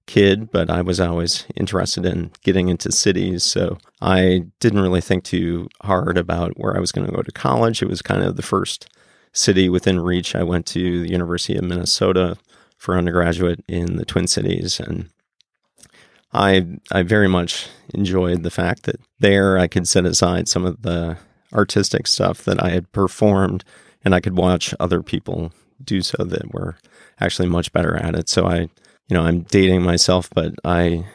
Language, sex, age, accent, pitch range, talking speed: English, male, 30-49, American, 85-95 Hz, 185 wpm